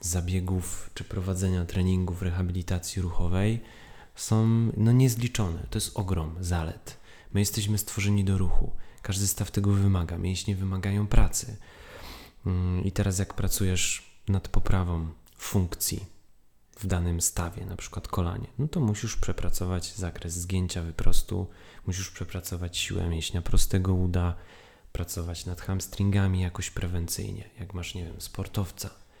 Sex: male